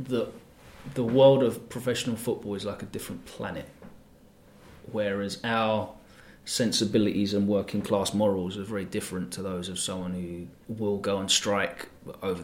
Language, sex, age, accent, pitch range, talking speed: English, male, 30-49, British, 95-120 Hz, 150 wpm